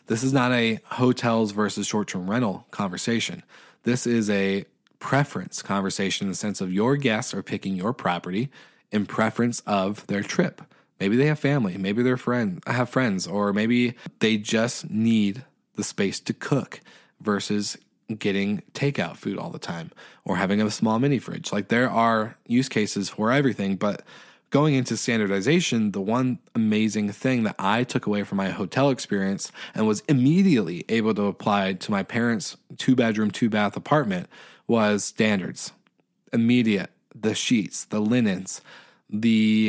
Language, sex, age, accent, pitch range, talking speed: English, male, 20-39, American, 100-120 Hz, 155 wpm